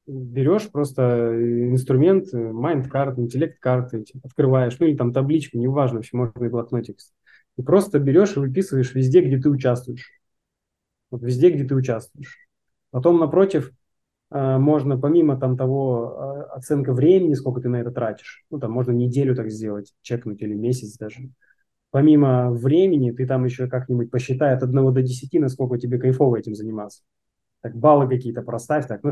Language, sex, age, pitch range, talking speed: Russian, male, 20-39, 125-160 Hz, 160 wpm